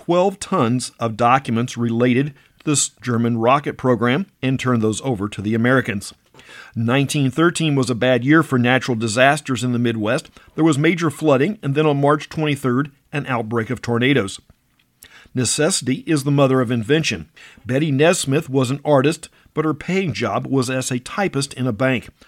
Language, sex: English, male